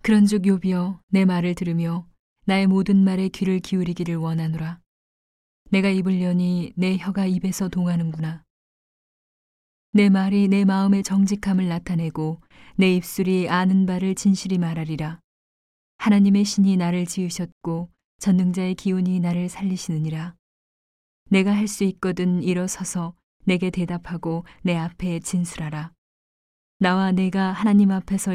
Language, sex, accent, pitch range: Korean, female, native, 170-195 Hz